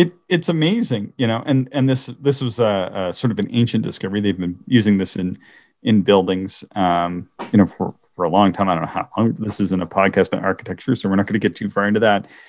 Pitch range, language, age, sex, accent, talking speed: 95-120 Hz, English, 30-49, male, American, 255 wpm